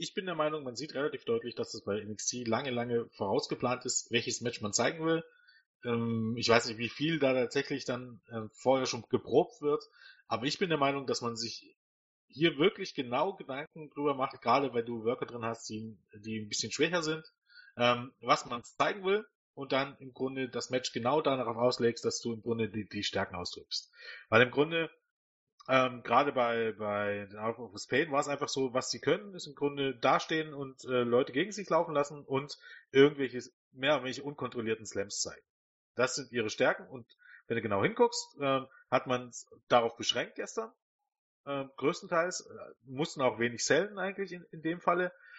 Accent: German